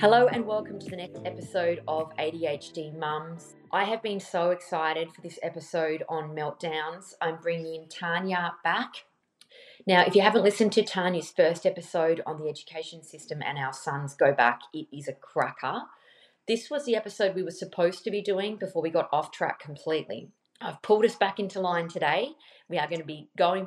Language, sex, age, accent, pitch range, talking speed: English, female, 30-49, Australian, 155-195 Hz, 195 wpm